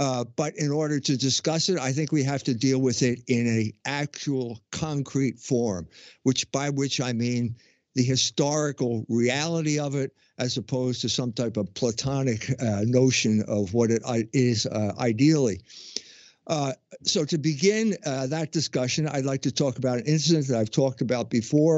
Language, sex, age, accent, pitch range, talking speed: English, male, 60-79, American, 120-150 Hz, 175 wpm